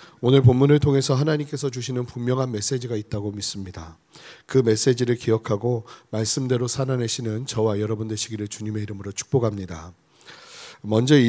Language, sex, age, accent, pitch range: Korean, male, 40-59, native, 110-135 Hz